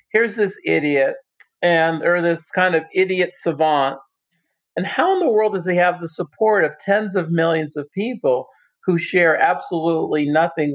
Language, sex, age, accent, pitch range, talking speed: English, male, 50-69, American, 140-185 Hz, 165 wpm